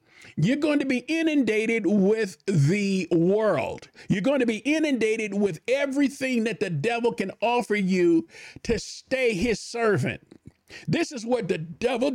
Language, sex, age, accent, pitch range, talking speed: English, male, 50-69, American, 195-280 Hz, 150 wpm